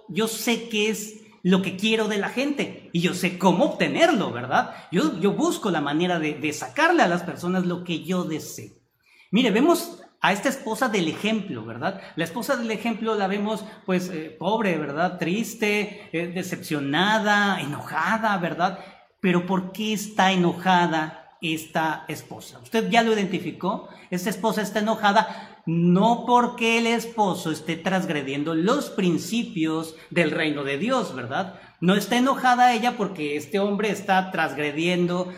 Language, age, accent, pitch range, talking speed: English, 40-59, Mexican, 165-220 Hz, 155 wpm